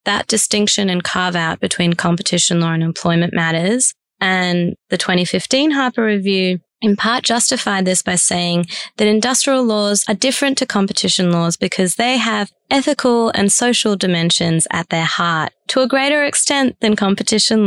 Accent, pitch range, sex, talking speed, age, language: Australian, 170-215 Hz, female, 155 wpm, 20-39, English